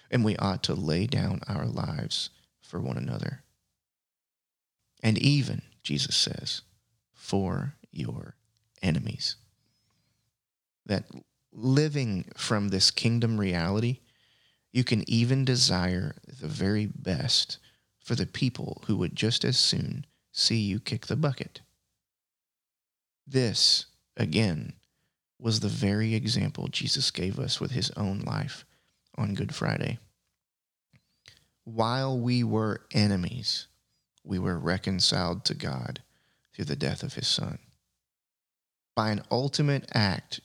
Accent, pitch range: American, 95-130 Hz